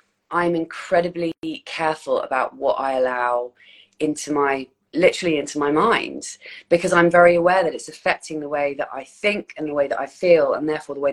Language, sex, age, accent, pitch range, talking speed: English, female, 30-49, British, 135-170 Hz, 190 wpm